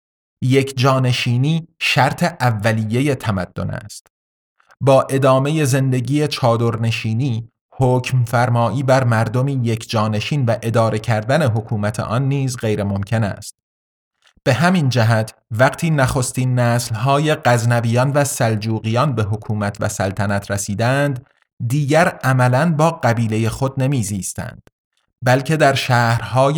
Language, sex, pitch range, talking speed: Persian, male, 110-135 Hz, 105 wpm